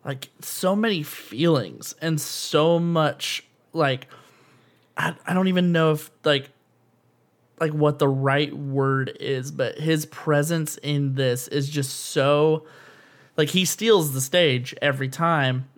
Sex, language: male, English